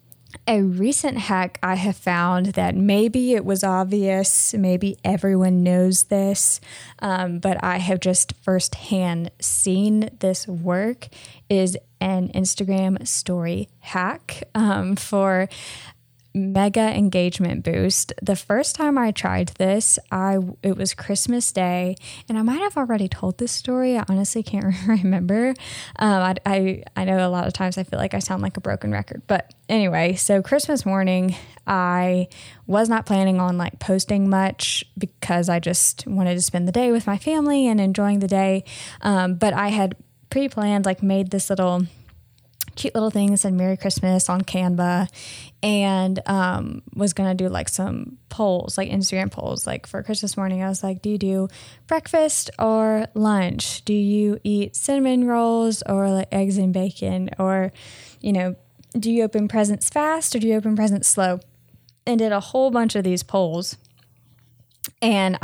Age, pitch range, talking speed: 10-29, 180-210 Hz, 165 wpm